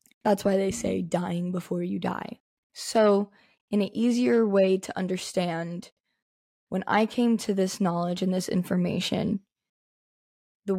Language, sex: English, female